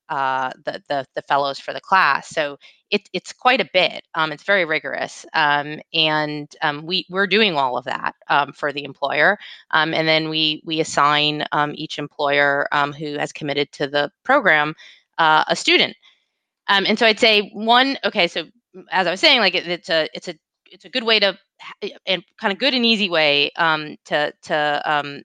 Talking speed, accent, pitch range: 200 wpm, American, 155-205 Hz